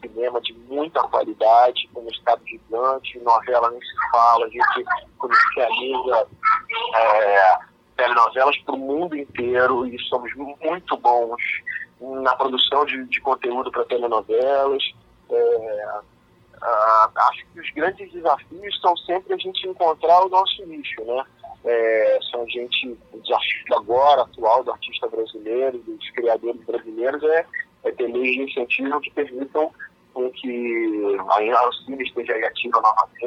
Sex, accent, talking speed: male, Brazilian, 130 wpm